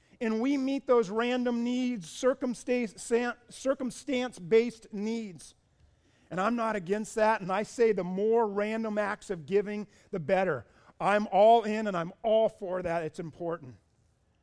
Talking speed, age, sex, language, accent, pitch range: 140 wpm, 40-59, male, English, American, 145-215 Hz